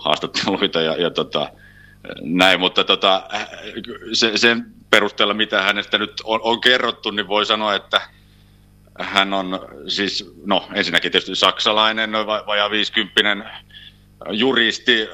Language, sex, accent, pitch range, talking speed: Finnish, male, native, 85-105 Hz, 125 wpm